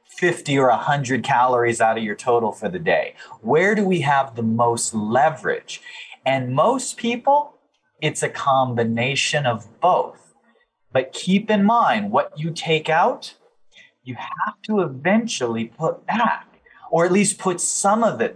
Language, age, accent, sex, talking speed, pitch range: English, 30-49, American, male, 155 wpm, 125-200 Hz